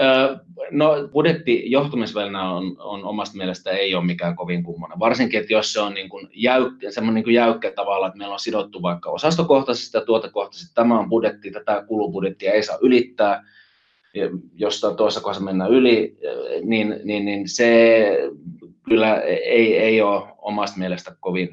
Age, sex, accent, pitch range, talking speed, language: 30-49, male, native, 95-120 Hz, 155 wpm, Finnish